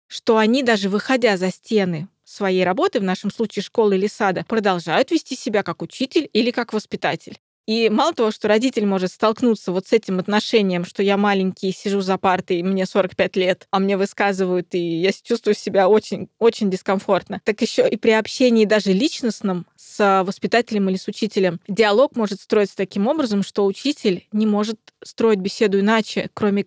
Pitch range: 190-230 Hz